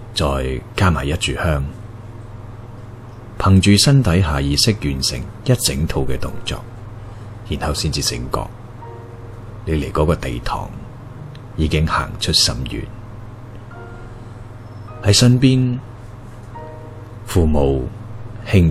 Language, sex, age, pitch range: Chinese, male, 30-49, 95-115 Hz